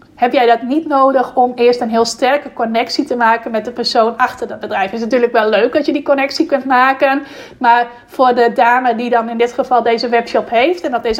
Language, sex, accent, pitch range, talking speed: Dutch, female, Dutch, 240-270 Hz, 240 wpm